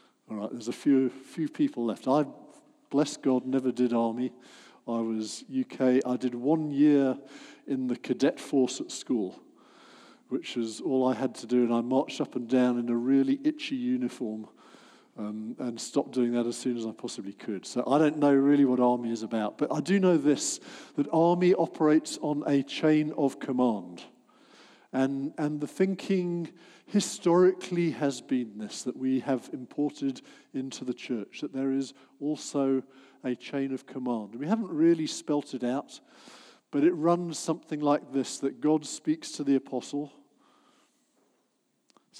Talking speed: 170 wpm